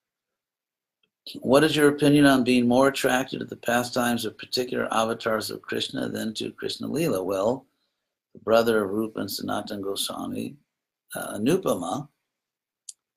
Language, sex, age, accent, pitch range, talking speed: English, male, 60-79, American, 110-145 Hz, 130 wpm